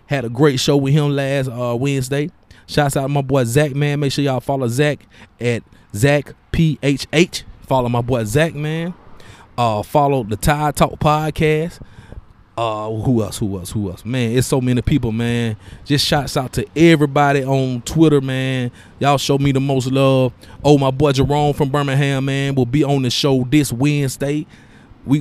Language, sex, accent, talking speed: English, male, American, 185 wpm